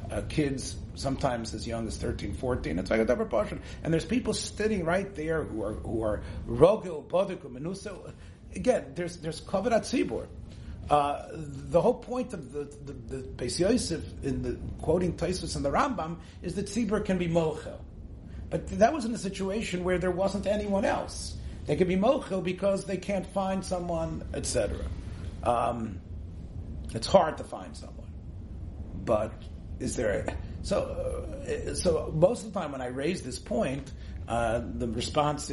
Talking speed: 160 wpm